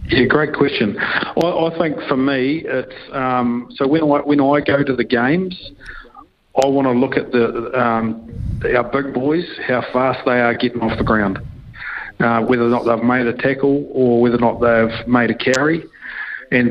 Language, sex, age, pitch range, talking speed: English, male, 50-69, 120-140 Hz, 200 wpm